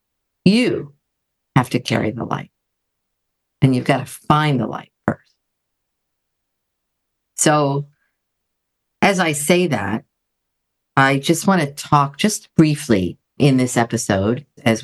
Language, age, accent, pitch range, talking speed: English, 50-69, American, 115-150 Hz, 120 wpm